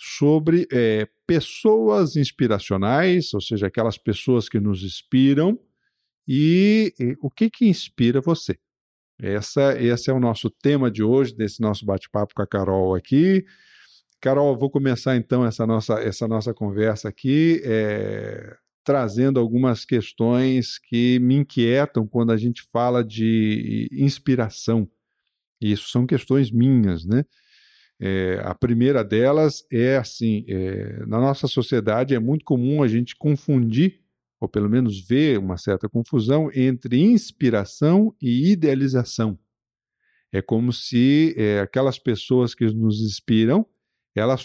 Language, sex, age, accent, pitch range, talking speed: Portuguese, male, 50-69, Brazilian, 110-140 Hz, 125 wpm